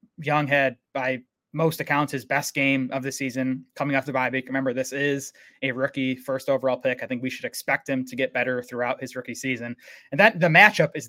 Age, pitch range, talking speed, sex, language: 20-39, 130-150 Hz, 220 wpm, male, English